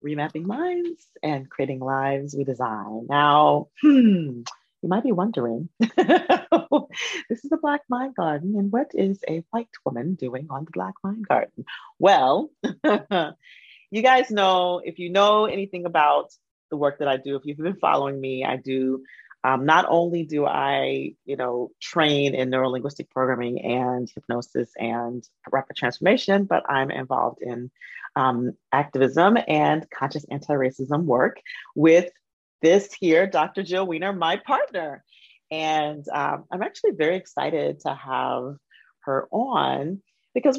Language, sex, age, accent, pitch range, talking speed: English, female, 30-49, American, 135-190 Hz, 145 wpm